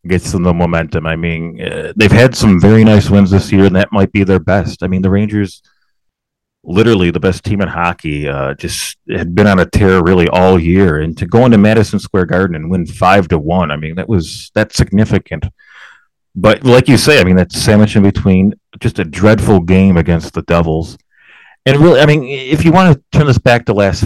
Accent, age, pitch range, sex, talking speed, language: American, 30-49, 90-105 Hz, male, 220 wpm, English